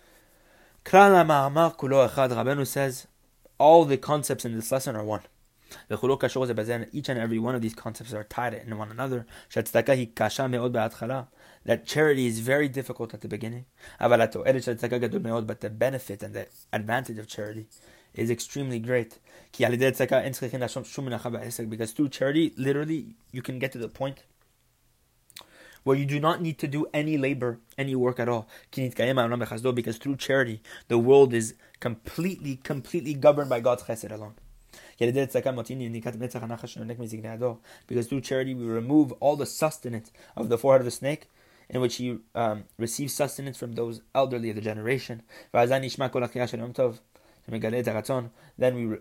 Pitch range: 115-135 Hz